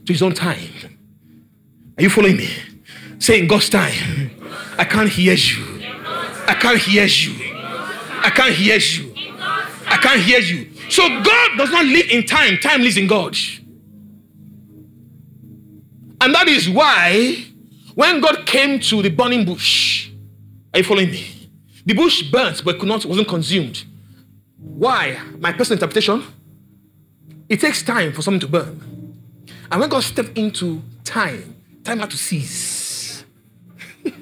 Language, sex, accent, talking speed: English, male, Nigerian, 145 wpm